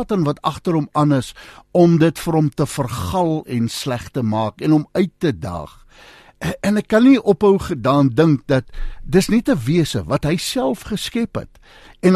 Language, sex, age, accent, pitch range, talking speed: English, male, 60-79, Dutch, 125-195 Hz, 190 wpm